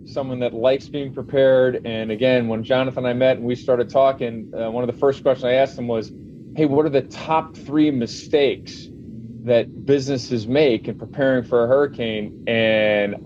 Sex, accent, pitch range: male, American, 105-130 Hz